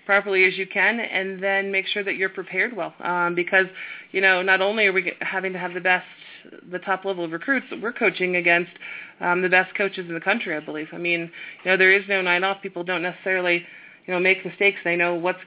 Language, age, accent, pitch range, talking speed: English, 20-39, American, 180-195 Hz, 240 wpm